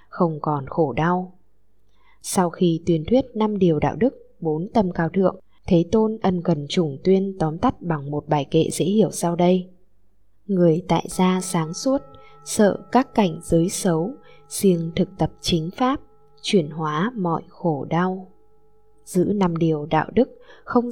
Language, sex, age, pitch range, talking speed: Vietnamese, female, 20-39, 160-200 Hz, 165 wpm